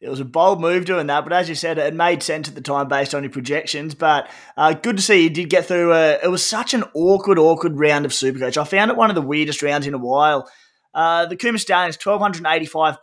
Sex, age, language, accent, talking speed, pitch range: male, 20-39, English, Australian, 260 wpm, 145-175 Hz